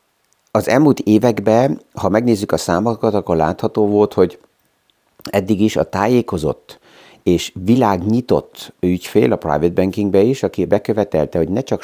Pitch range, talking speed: 90-110 Hz, 135 wpm